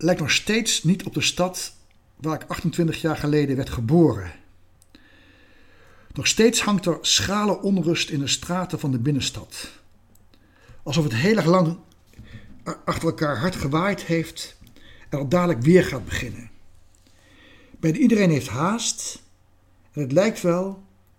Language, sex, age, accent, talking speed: Dutch, male, 60-79, Dutch, 145 wpm